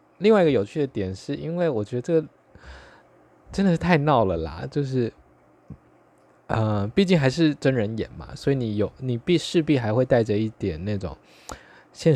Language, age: Chinese, 20-39